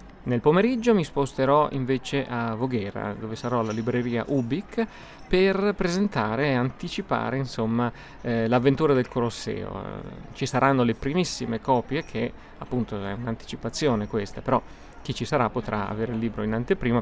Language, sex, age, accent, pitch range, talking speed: Italian, male, 30-49, native, 110-135 Hz, 145 wpm